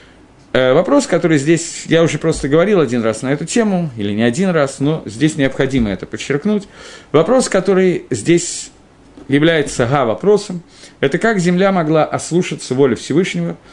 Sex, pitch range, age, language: male, 135-185 Hz, 50-69, Russian